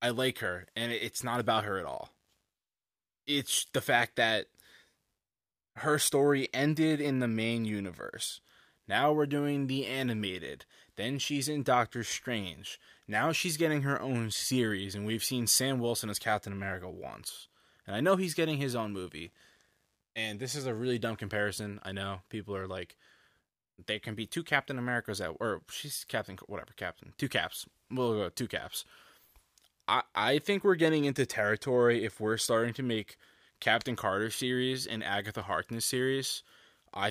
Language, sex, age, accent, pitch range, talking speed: English, male, 20-39, American, 105-130 Hz, 170 wpm